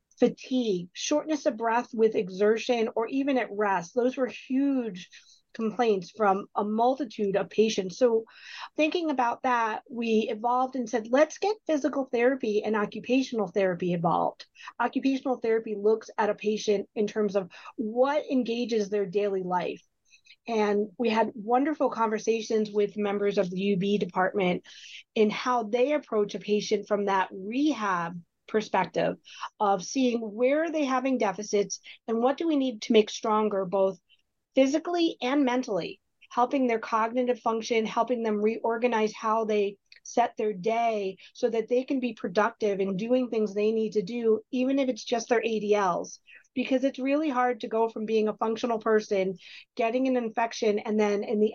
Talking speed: 160 wpm